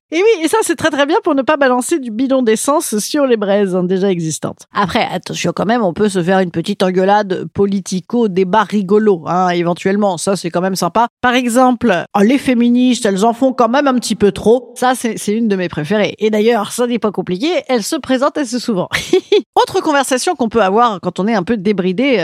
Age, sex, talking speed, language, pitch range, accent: 50-69, female, 225 wpm, French, 195-295 Hz, French